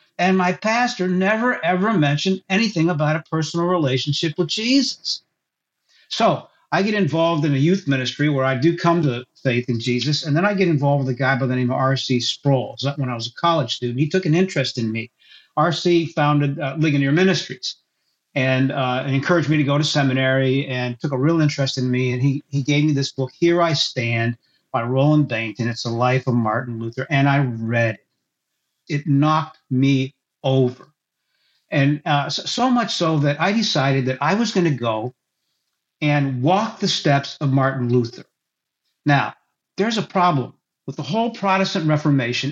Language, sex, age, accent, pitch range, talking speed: English, male, 50-69, American, 130-170 Hz, 190 wpm